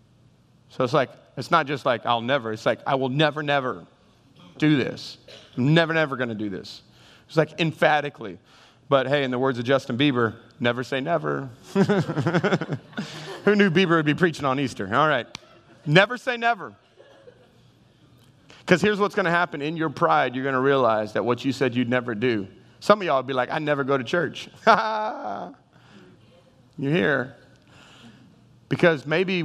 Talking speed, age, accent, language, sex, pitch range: 175 wpm, 30-49, American, English, male, 120-155 Hz